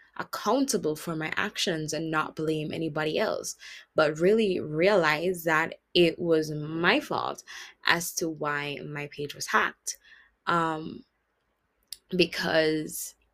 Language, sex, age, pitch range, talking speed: English, female, 20-39, 155-200 Hz, 115 wpm